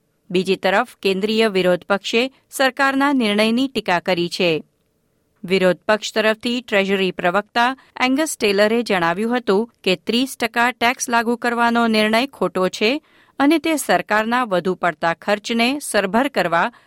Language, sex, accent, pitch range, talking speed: Gujarati, female, native, 185-245 Hz, 115 wpm